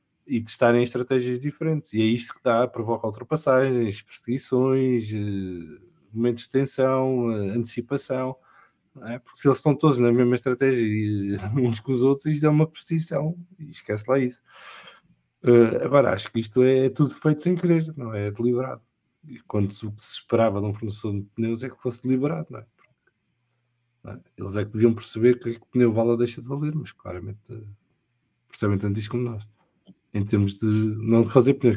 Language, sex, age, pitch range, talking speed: English, male, 20-39, 110-130 Hz, 185 wpm